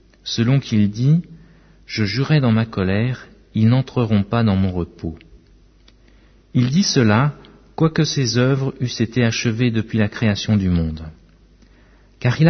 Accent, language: French, French